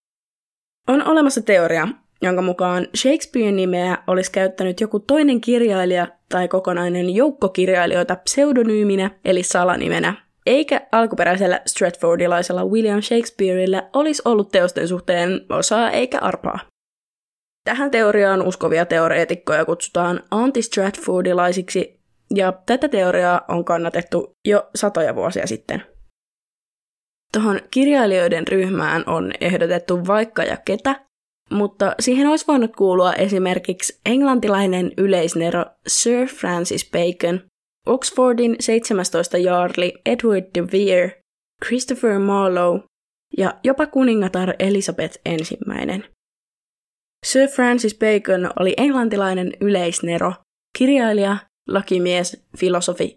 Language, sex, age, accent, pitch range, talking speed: Finnish, female, 20-39, native, 180-230 Hz, 95 wpm